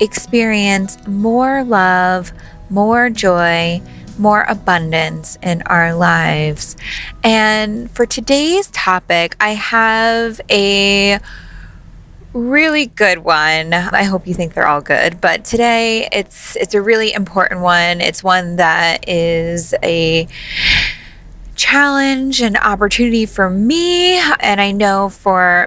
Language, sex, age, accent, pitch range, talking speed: English, female, 20-39, American, 175-235 Hz, 115 wpm